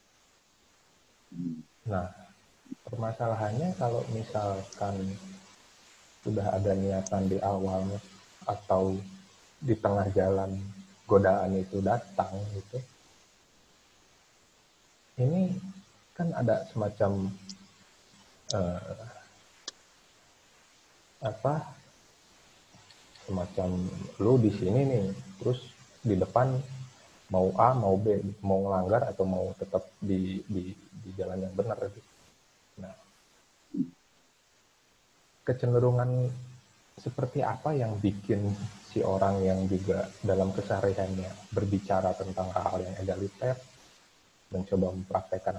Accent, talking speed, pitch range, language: native, 85 wpm, 95-115 Hz, Indonesian